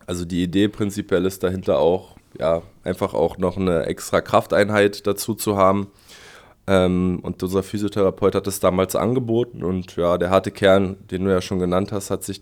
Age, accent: 20-39, German